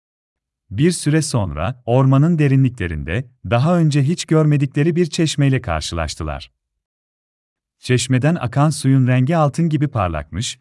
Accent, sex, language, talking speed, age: native, male, Turkish, 105 wpm, 40-59